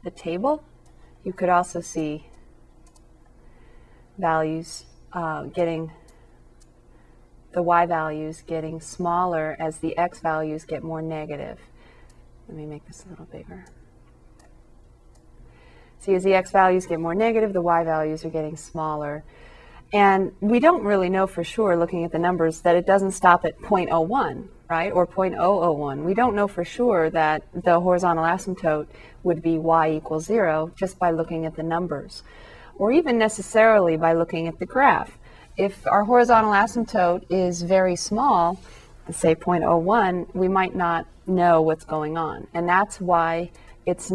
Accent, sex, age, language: American, female, 30-49, English